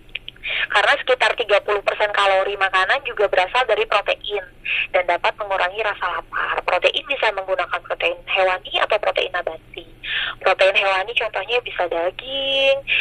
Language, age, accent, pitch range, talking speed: Indonesian, 20-39, native, 195-275 Hz, 125 wpm